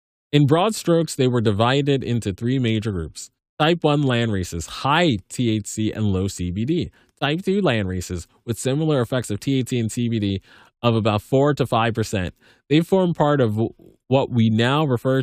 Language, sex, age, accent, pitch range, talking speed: English, male, 20-39, American, 95-130 Hz, 170 wpm